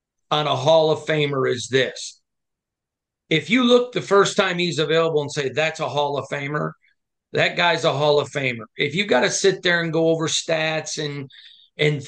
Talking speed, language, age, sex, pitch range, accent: 200 wpm, English, 40-59, male, 145-180 Hz, American